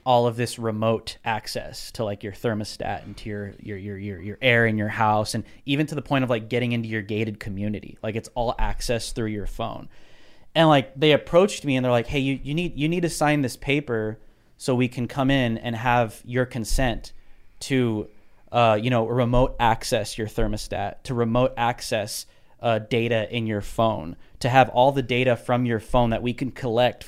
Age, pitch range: 20-39, 115-145 Hz